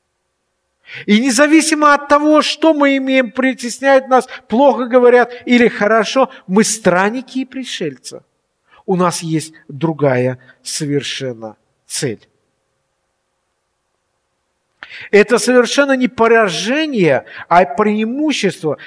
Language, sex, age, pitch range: Russian, male, 50-69, 150-225 Hz